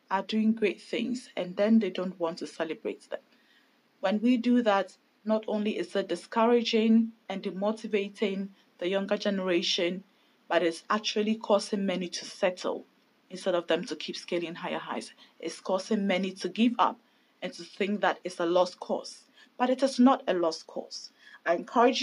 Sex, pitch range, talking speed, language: female, 185-245 Hz, 175 wpm, English